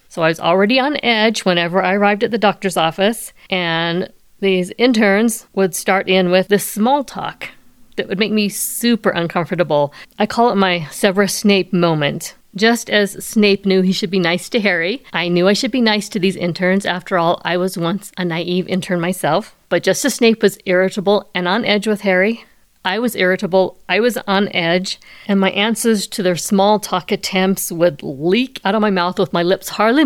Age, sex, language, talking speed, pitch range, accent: 50-69, female, English, 200 wpm, 185-220 Hz, American